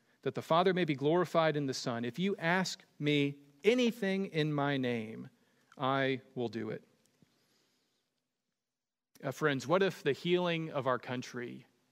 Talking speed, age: 150 wpm, 40-59